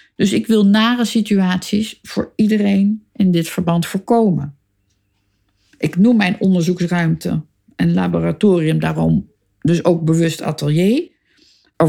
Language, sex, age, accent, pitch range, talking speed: Dutch, female, 50-69, Dutch, 160-220 Hz, 115 wpm